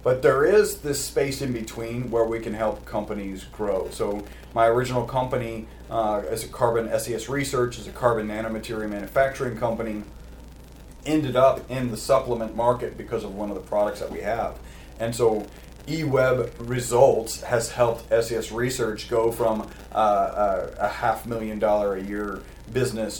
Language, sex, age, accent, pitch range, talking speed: English, male, 40-59, American, 105-125 Hz, 165 wpm